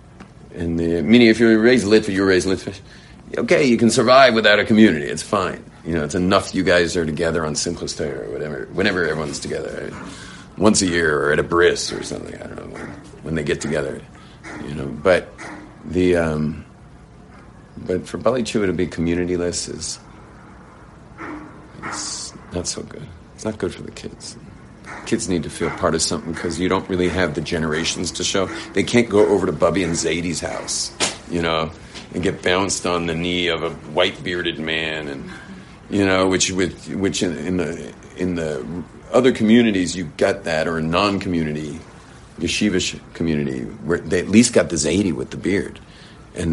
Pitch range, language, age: 80-100 Hz, English, 40-59